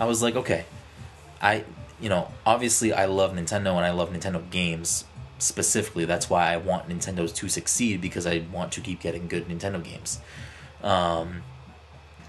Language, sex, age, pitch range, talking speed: English, male, 20-39, 85-105 Hz, 165 wpm